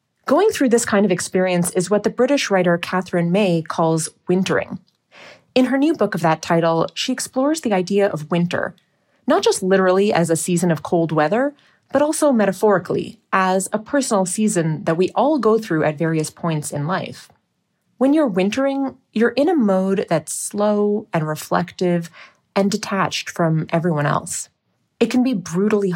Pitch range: 170-225 Hz